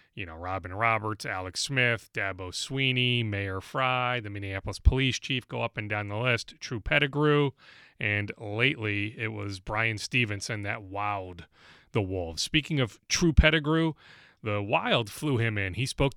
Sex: male